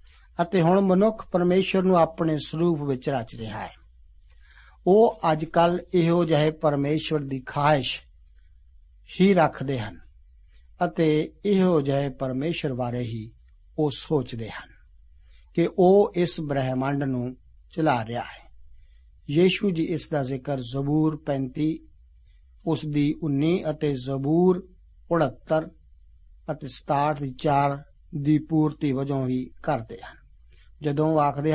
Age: 60-79